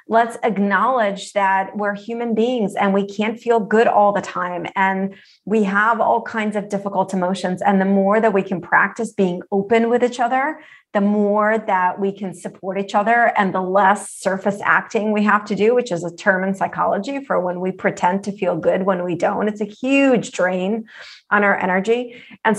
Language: English